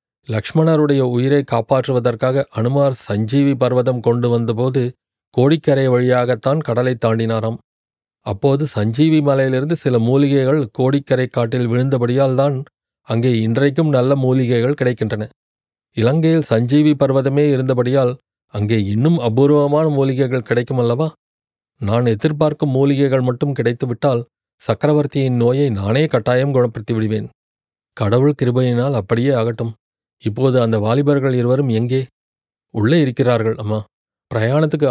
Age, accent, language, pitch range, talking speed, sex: 40-59, native, Tamil, 115-140 Hz, 100 wpm, male